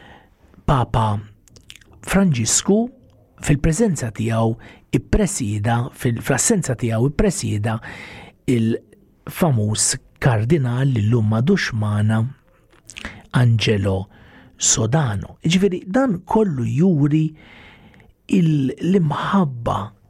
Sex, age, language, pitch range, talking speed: male, 50-69, English, 110-165 Hz, 55 wpm